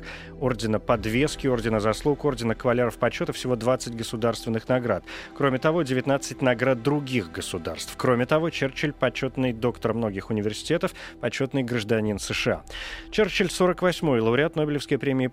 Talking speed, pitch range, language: 135 wpm, 115-140 Hz, Russian